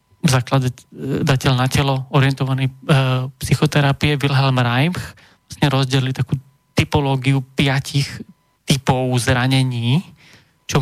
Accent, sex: Czech, male